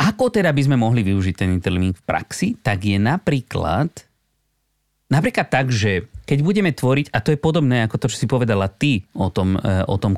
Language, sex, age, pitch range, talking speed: Slovak, male, 30-49, 100-140 Hz, 195 wpm